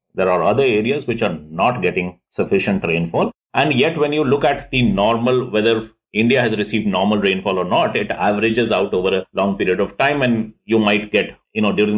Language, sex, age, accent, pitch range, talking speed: English, male, 50-69, Indian, 100-125 Hz, 210 wpm